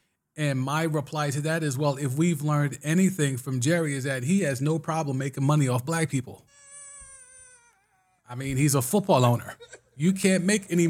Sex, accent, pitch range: male, American, 120-155 Hz